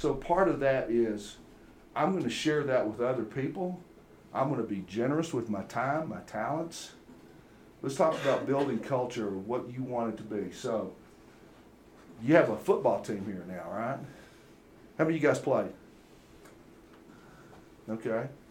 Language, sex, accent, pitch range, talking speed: English, male, American, 110-150 Hz, 160 wpm